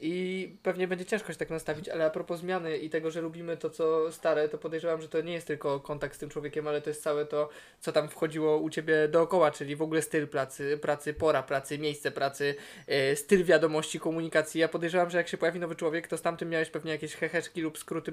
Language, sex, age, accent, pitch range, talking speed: Polish, male, 20-39, native, 155-175 Hz, 230 wpm